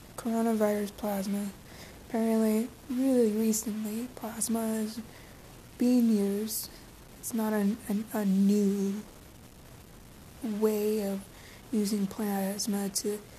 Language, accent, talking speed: English, American, 90 wpm